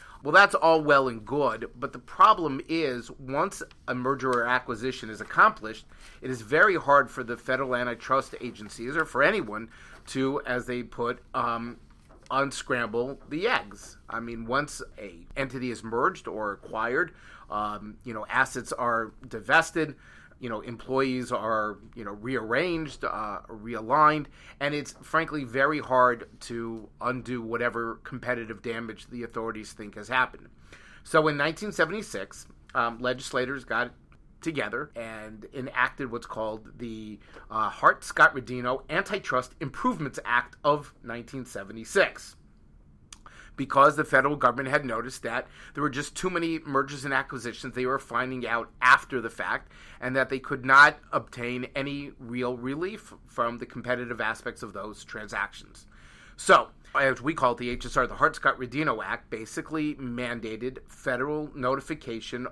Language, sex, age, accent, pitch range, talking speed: English, male, 30-49, American, 115-135 Hz, 145 wpm